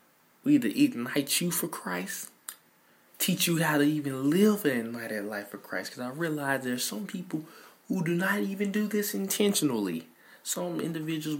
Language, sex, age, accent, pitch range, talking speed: English, male, 20-39, American, 135-180 Hz, 170 wpm